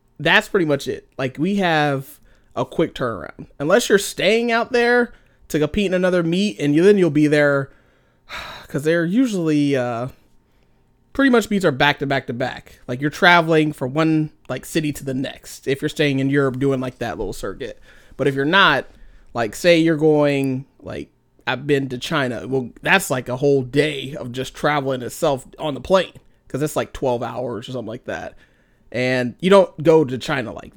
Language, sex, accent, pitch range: English, male, American, 130-165 Hz